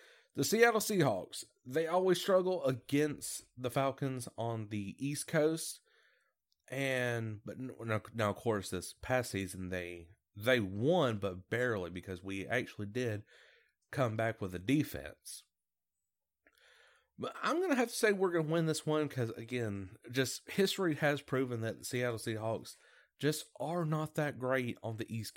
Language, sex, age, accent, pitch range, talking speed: English, male, 30-49, American, 110-150 Hz, 150 wpm